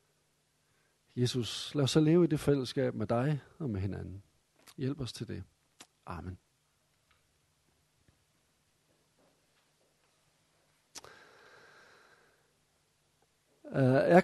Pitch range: 125-180 Hz